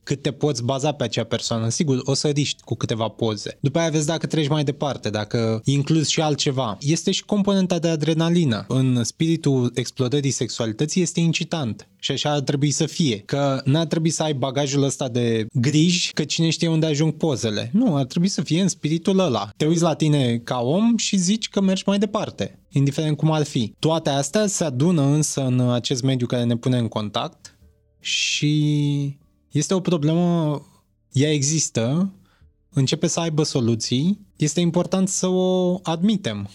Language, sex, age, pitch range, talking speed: Romanian, male, 20-39, 120-160 Hz, 180 wpm